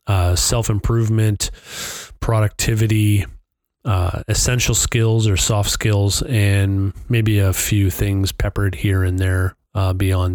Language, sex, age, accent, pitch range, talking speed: English, male, 30-49, American, 100-115 Hz, 115 wpm